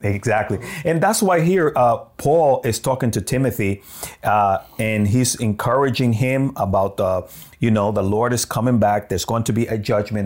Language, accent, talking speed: English, American, 185 wpm